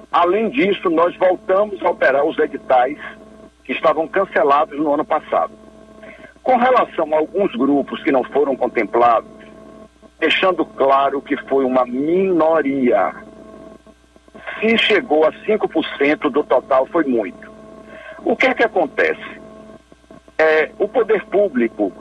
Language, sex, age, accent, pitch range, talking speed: Portuguese, male, 60-79, Brazilian, 155-225 Hz, 125 wpm